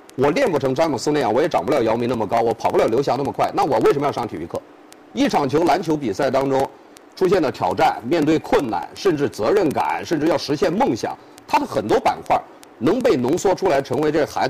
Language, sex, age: Chinese, male, 50-69